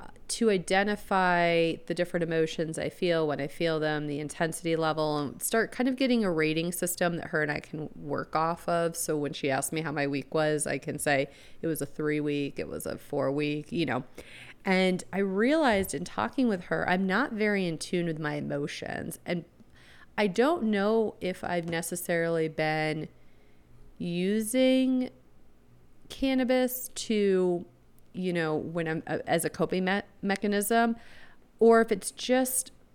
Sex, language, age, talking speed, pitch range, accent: female, English, 30-49, 170 wpm, 150-190 Hz, American